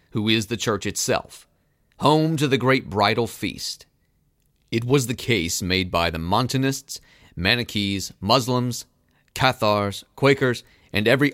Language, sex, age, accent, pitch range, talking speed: English, male, 30-49, American, 100-130 Hz, 130 wpm